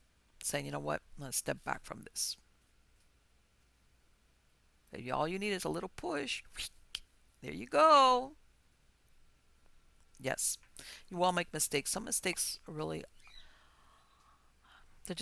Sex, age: female, 50-69